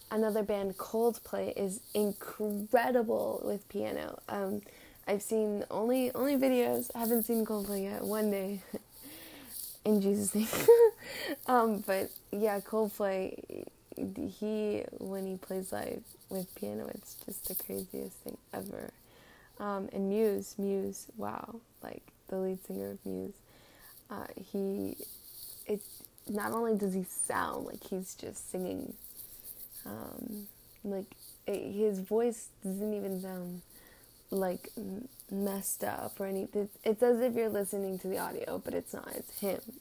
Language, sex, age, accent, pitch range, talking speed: English, female, 10-29, American, 190-220 Hz, 135 wpm